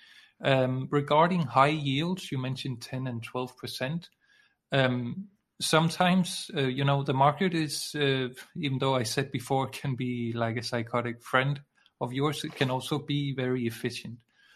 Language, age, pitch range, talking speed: English, 40-59, 125-145 Hz, 155 wpm